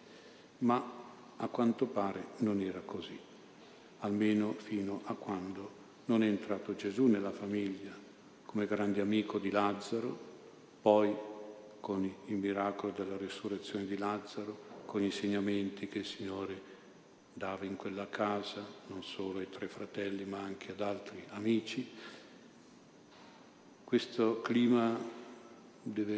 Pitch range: 100-110 Hz